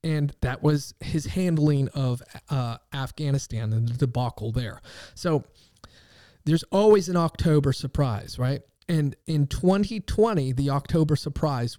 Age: 30-49